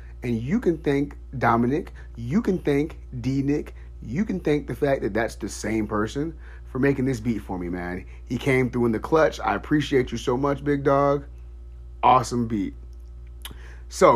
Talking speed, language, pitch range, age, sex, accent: 180 wpm, English, 95-130 Hz, 30-49, male, American